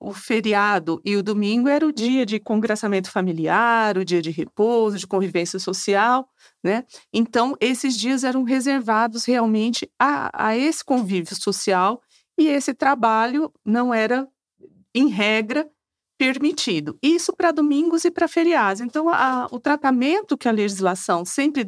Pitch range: 200-275 Hz